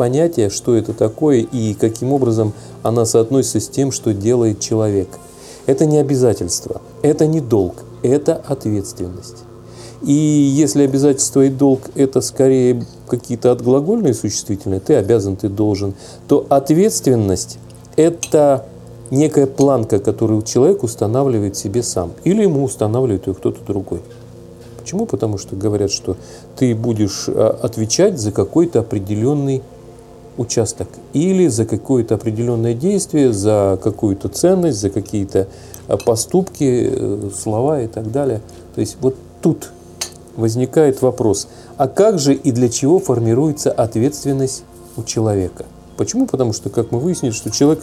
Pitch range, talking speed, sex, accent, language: 110-140 Hz, 130 wpm, male, native, Russian